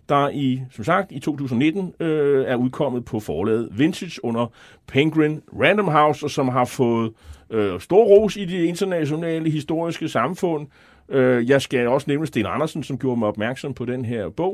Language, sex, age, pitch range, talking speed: Danish, male, 30-49, 120-160 Hz, 180 wpm